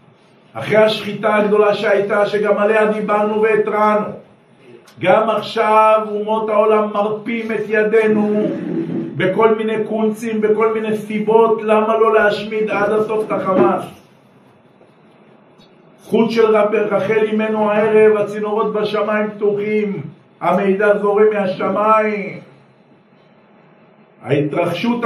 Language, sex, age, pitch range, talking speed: Hebrew, male, 50-69, 190-215 Hz, 95 wpm